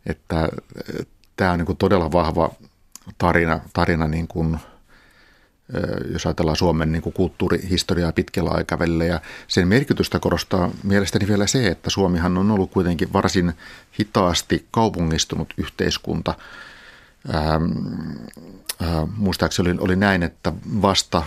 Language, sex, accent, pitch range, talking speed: Finnish, male, native, 80-95 Hz, 120 wpm